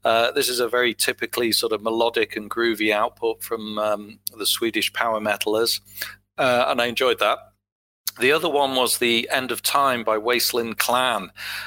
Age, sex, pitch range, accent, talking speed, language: 40-59, male, 105-130 Hz, British, 175 wpm, English